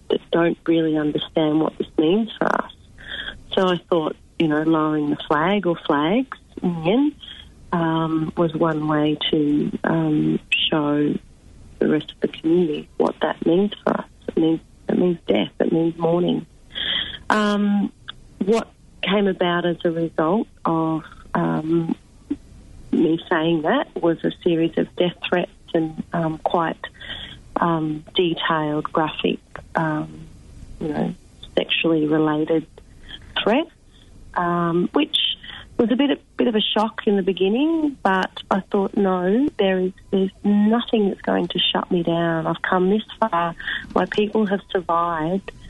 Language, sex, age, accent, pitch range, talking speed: English, female, 40-59, Australian, 160-195 Hz, 145 wpm